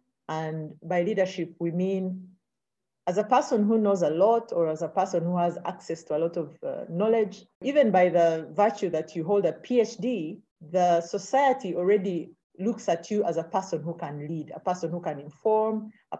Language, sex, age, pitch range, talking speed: English, female, 50-69, 165-210 Hz, 195 wpm